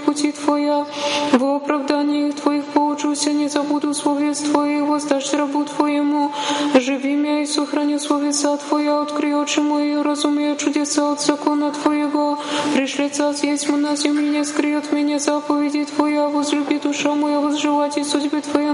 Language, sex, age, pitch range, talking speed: Polish, female, 20-39, 290-300 Hz, 140 wpm